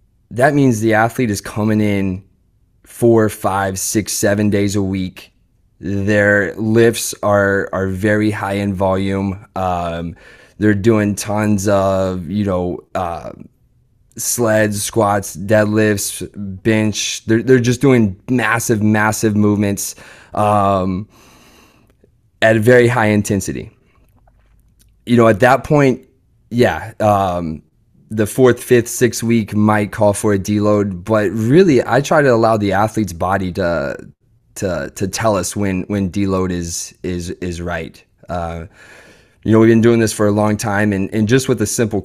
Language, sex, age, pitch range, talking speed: English, male, 20-39, 95-110 Hz, 145 wpm